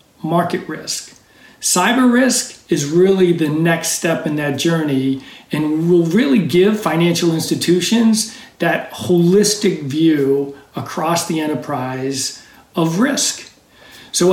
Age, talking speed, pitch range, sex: 50-69, 115 wpm, 155-185 Hz, male